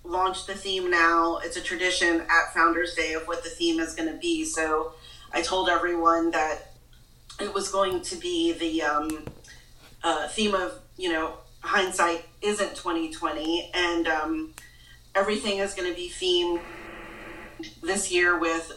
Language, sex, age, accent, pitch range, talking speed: English, female, 40-59, American, 165-195 Hz, 155 wpm